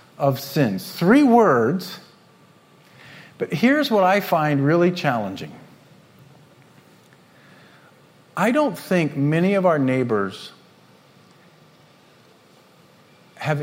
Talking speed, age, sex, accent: 85 wpm, 50-69, male, American